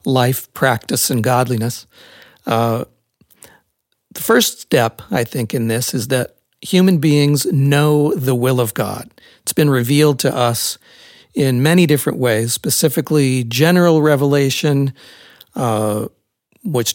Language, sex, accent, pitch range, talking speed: English, male, American, 120-150 Hz, 125 wpm